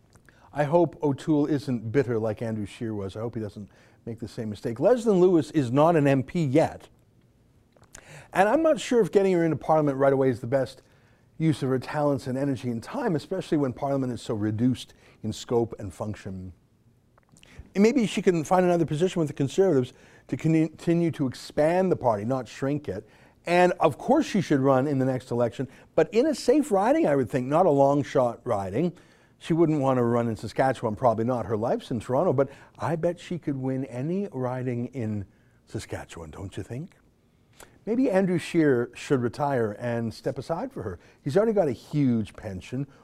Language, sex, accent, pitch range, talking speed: English, male, American, 115-170 Hz, 195 wpm